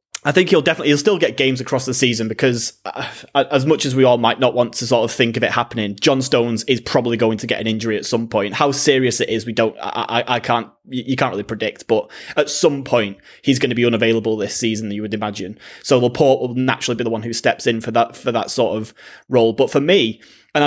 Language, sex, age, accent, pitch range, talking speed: English, male, 20-39, British, 115-140 Hz, 255 wpm